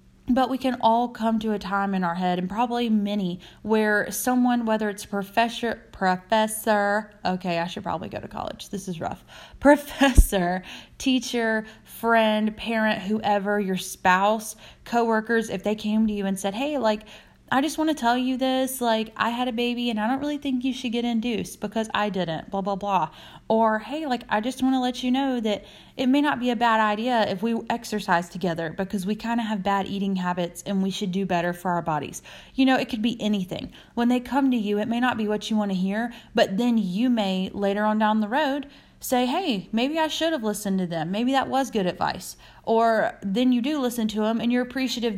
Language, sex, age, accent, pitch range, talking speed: English, female, 20-39, American, 190-235 Hz, 220 wpm